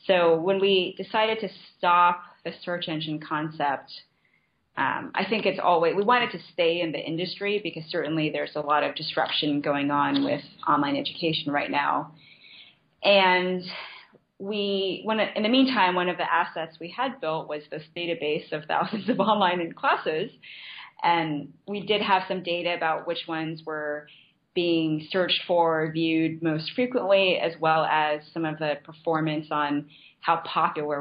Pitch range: 155-190 Hz